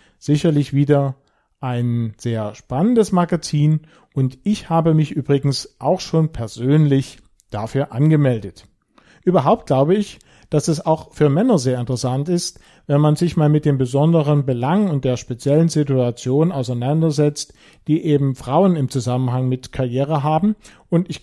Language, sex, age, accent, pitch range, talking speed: German, male, 40-59, German, 130-165 Hz, 140 wpm